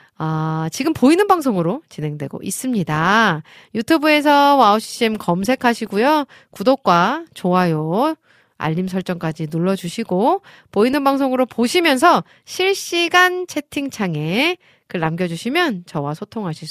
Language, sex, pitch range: Korean, female, 165-270 Hz